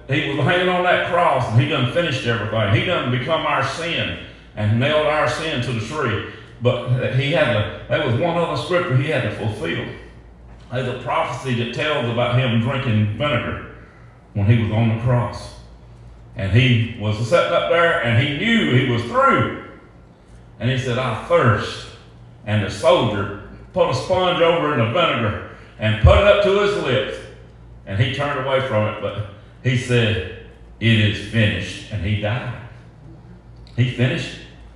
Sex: male